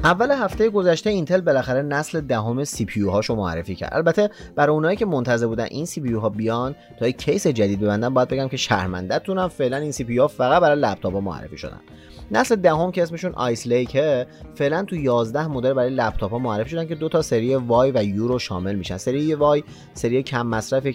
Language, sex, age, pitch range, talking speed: Persian, male, 30-49, 105-150 Hz, 220 wpm